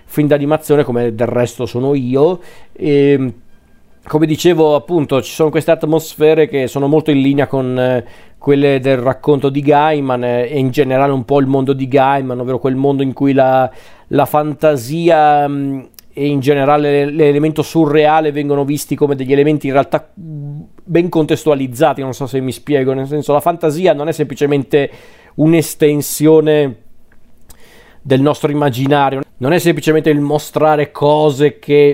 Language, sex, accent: Italian, male, native